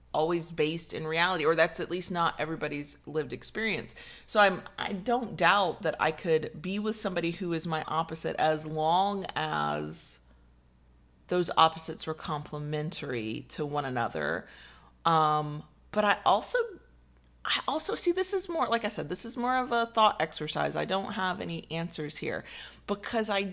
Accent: American